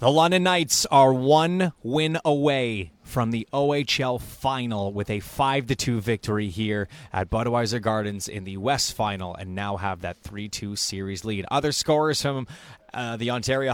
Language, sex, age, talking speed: English, male, 30-49, 155 wpm